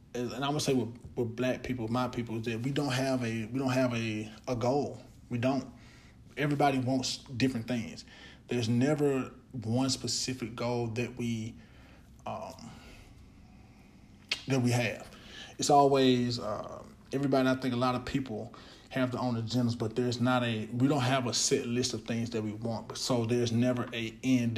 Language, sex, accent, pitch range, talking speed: English, male, American, 115-130 Hz, 180 wpm